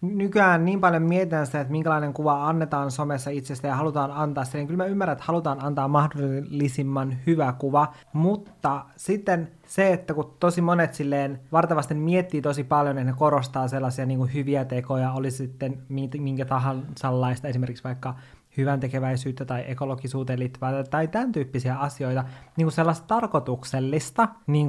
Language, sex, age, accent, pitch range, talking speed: Finnish, male, 20-39, native, 135-170 Hz, 160 wpm